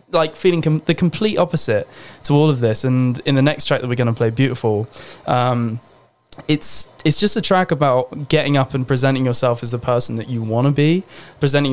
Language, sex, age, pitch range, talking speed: English, male, 20-39, 115-140 Hz, 210 wpm